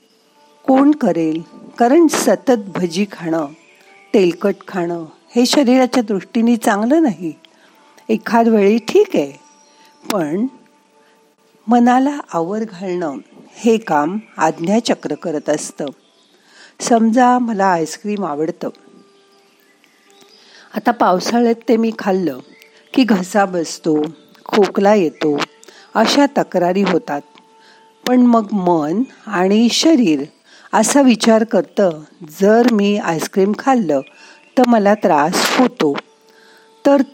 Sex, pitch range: female, 185-255 Hz